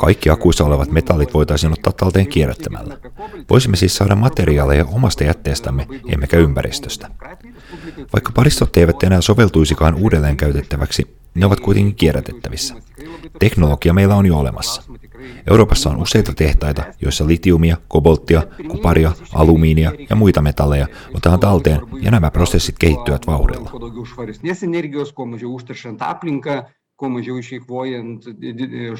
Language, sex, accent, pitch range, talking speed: Finnish, male, native, 75-115 Hz, 105 wpm